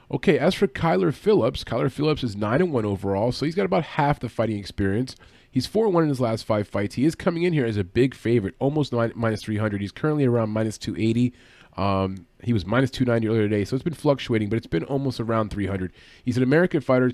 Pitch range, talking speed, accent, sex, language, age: 100-135 Hz, 220 wpm, American, male, English, 30-49